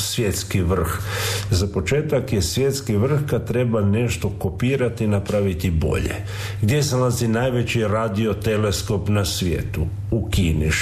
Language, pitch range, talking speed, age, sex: Croatian, 100-115 Hz, 130 wpm, 50-69, male